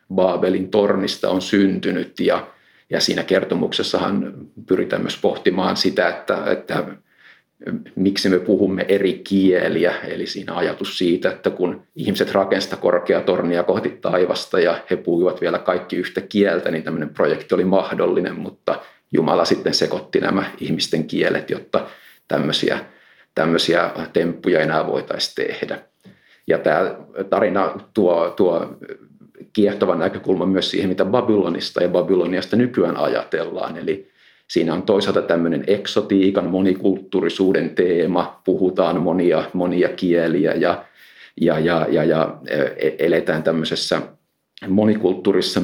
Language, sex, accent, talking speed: Finnish, male, native, 120 wpm